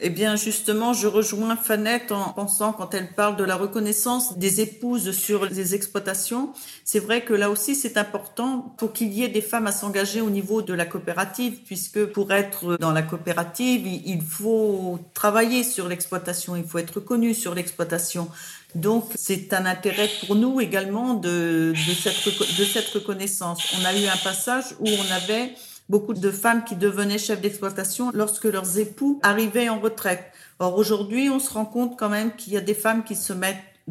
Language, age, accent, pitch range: French, 50-69, French, 180-220 Hz